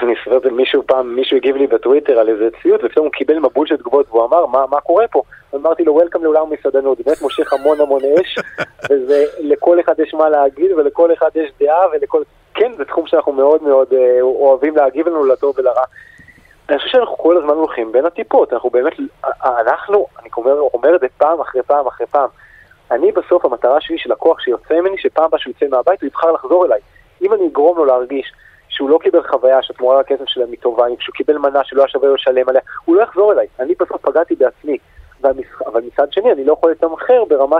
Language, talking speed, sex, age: Hebrew, 190 wpm, male, 30-49